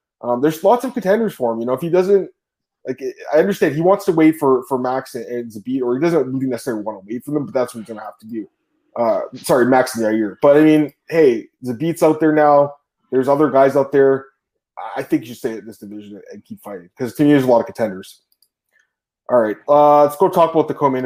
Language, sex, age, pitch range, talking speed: English, male, 20-39, 130-185 Hz, 250 wpm